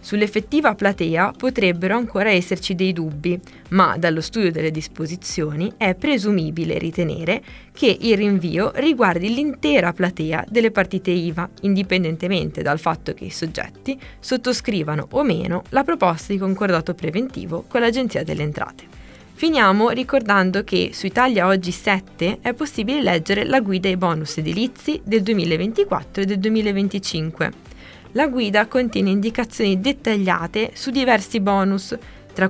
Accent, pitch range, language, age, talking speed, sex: native, 170-225 Hz, Italian, 20-39, 130 wpm, female